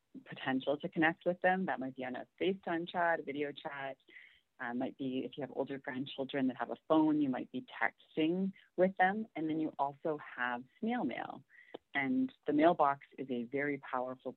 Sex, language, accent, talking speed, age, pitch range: female, English, American, 195 wpm, 40-59, 130-155 Hz